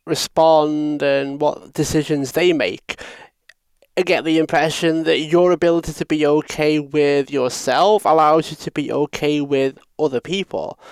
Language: English